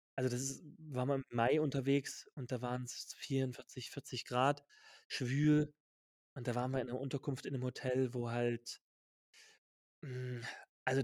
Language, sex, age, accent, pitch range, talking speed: German, male, 30-49, German, 120-150 Hz, 165 wpm